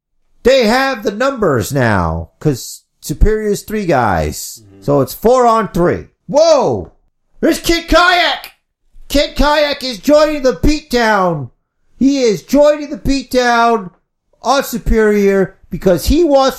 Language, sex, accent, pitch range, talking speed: English, male, American, 180-265 Hz, 125 wpm